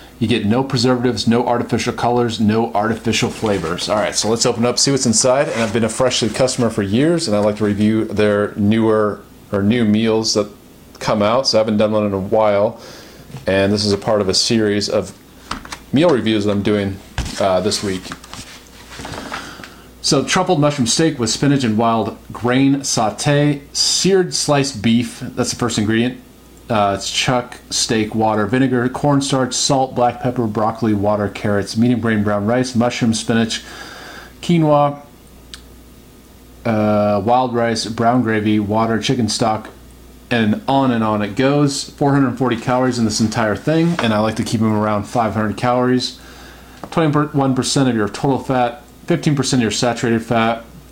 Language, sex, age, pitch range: English, male, 40-59, 105-125 Hz